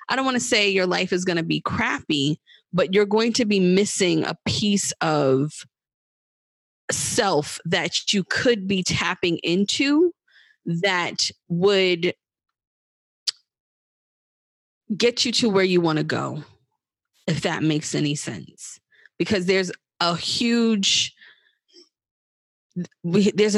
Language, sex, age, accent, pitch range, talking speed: English, female, 20-39, American, 160-200 Hz, 120 wpm